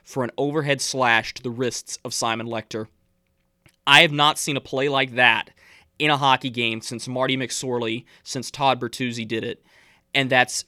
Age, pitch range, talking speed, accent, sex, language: 20-39, 125-155 Hz, 180 wpm, American, male, English